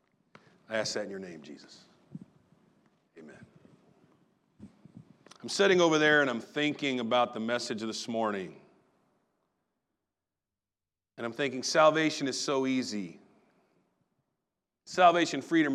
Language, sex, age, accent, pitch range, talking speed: English, male, 40-59, American, 115-190 Hz, 115 wpm